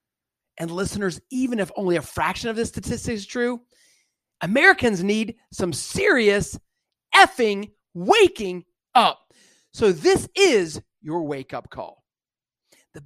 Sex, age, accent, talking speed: male, 40-59, American, 125 wpm